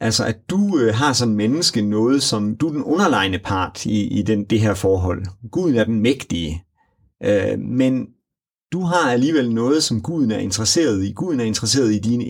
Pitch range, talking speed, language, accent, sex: 105-125 Hz, 195 wpm, Danish, native, male